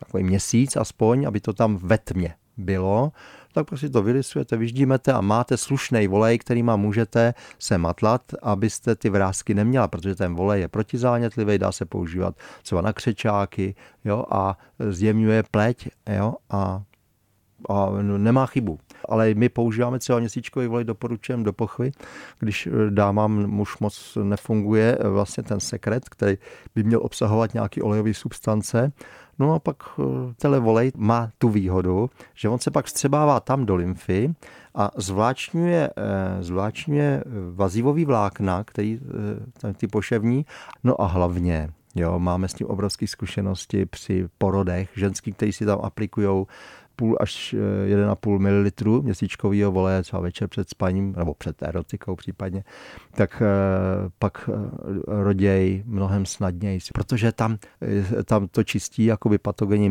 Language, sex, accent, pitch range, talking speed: Czech, male, native, 95-115 Hz, 135 wpm